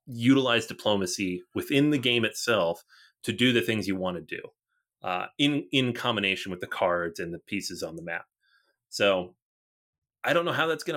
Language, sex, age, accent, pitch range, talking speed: English, male, 30-49, American, 95-120 Hz, 185 wpm